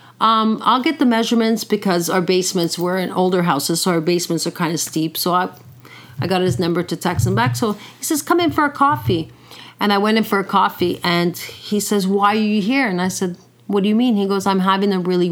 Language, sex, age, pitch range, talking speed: English, female, 40-59, 175-220 Hz, 250 wpm